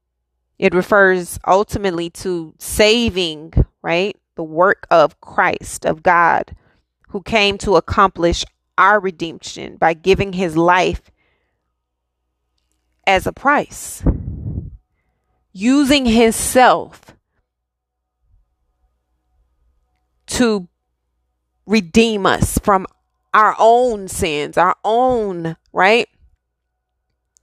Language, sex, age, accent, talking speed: English, female, 20-39, American, 80 wpm